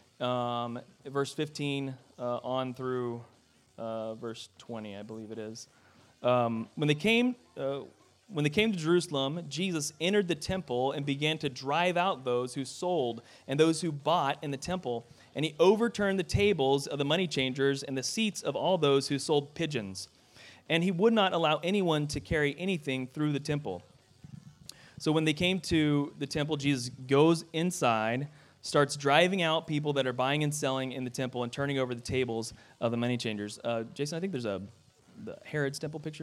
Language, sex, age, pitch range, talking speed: English, male, 30-49, 120-155 Hz, 185 wpm